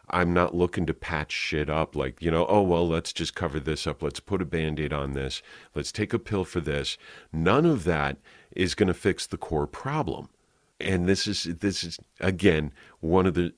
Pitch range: 70-85 Hz